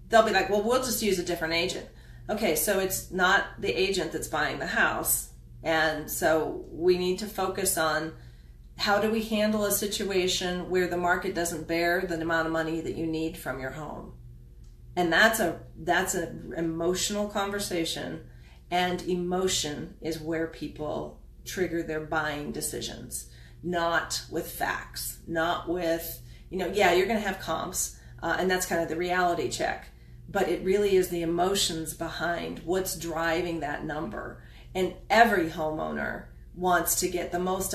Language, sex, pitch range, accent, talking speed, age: English, female, 155-185 Hz, American, 165 wpm, 40-59